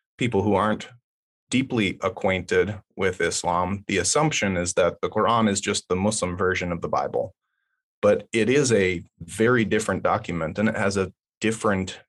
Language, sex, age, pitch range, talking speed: English, male, 30-49, 95-115 Hz, 165 wpm